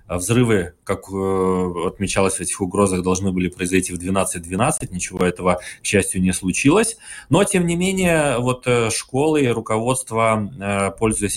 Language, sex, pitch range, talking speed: Russian, male, 95-110 Hz, 130 wpm